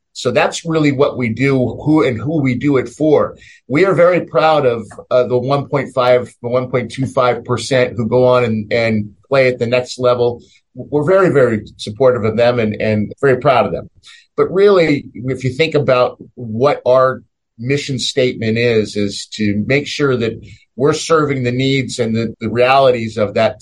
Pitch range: 110-135 Hz